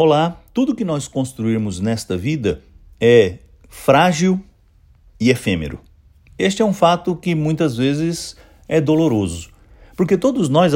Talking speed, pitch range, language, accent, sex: 130 wpm, 100-150 Hz, English, Brazilian, male